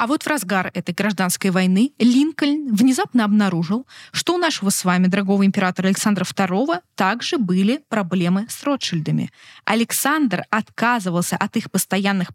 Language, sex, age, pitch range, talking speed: Russian, female, 20-39, 175-230 Hz, 140 wpm